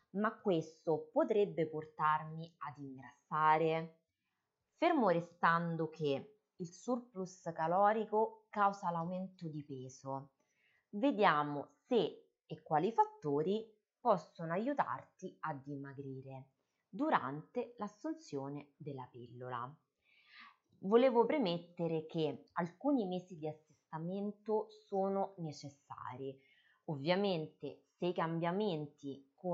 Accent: native